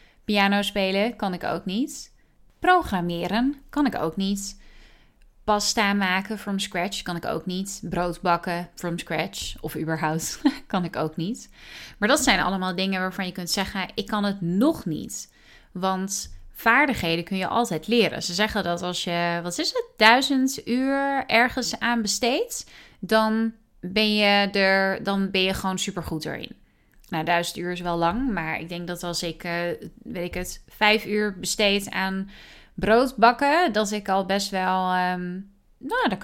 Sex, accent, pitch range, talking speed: female, Dutch, 170-220 Hz, 165 wpm